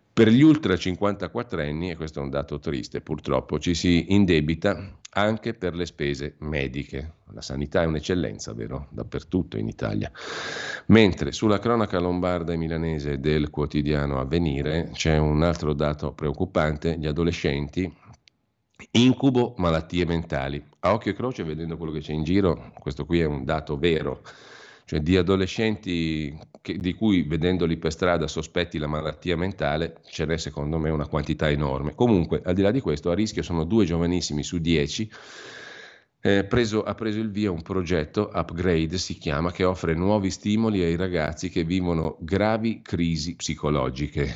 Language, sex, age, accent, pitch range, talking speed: Italian, male, 40-59, native, 75-95 Hz, 155 wpm